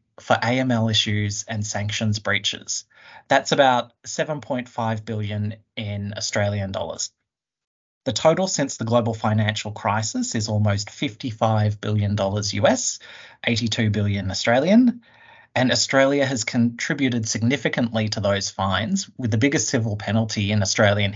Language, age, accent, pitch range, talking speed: English, 30-49, Australian, 105-115 Hz, 120 wpm